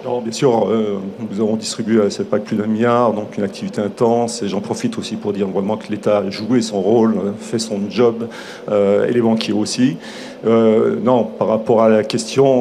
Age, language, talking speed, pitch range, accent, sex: 40-59, French, 215 wpm, 110-125 Hz, French, male